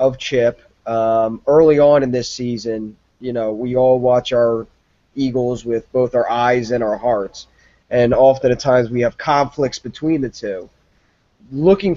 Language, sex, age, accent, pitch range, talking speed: English, male, 20-39, American, 115-140 Hz, 165 wpm